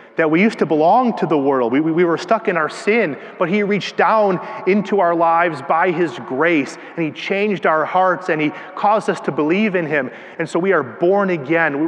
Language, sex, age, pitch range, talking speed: English, male, 30-49, 165-200 Hz, 220 wpm